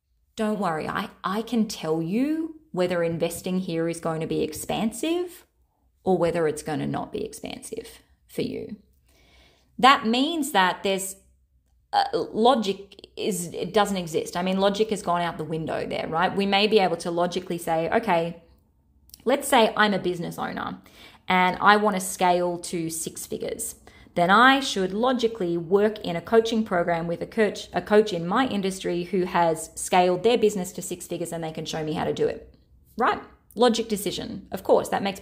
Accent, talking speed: Australian, 185 wpm